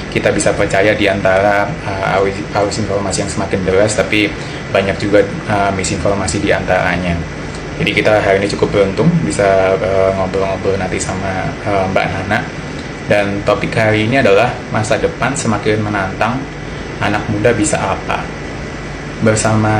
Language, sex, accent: English, male, Indonesian